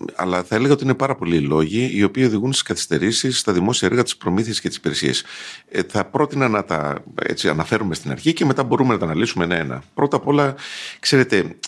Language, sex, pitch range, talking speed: Greek, male, 85-140 Hz, 215 wpm